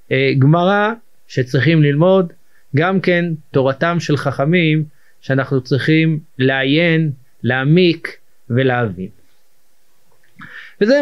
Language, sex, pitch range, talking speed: Hebrew, male, 135-170 Hz, 75 wpm